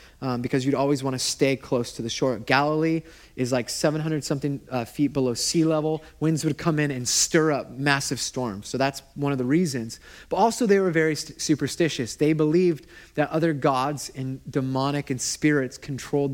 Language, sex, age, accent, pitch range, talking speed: English, male, 30-49, American, 140-195 Hz, 185 wpm